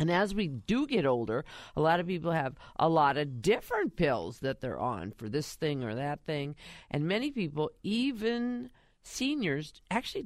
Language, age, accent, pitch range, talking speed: English, 50-69, American, 135-190 Hz, 180 wpm